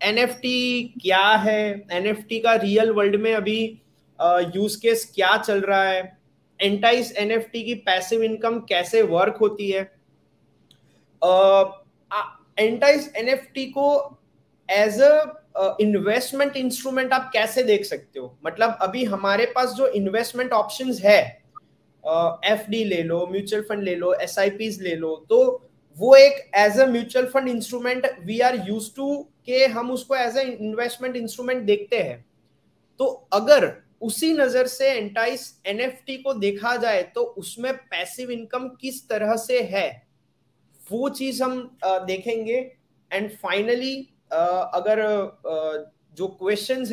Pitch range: 195-255 Hz